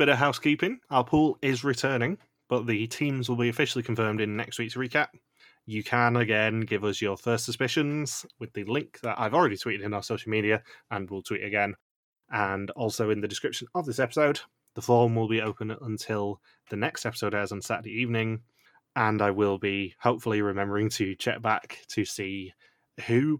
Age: 20-39